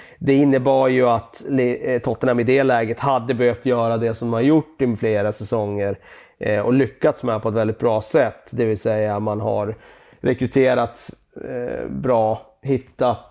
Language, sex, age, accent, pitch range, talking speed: Swedish, male, 30-49, native, 110-135 Hz, 160 wpm